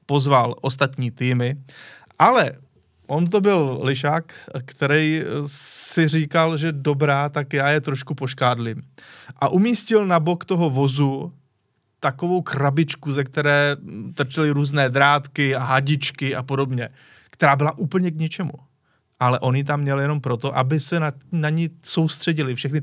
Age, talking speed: 20-39, 140 wpm